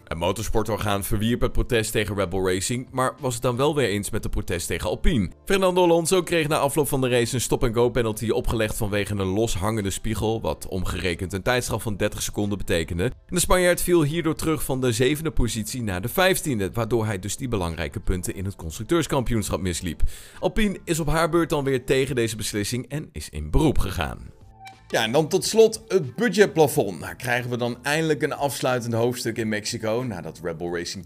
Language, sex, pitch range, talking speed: Dutch, male, 100-140 Hz, 195 wpm